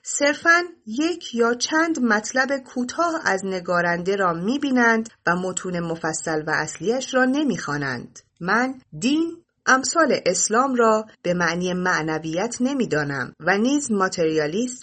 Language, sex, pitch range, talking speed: Persian, female, 170-255 Hz, 115 wpm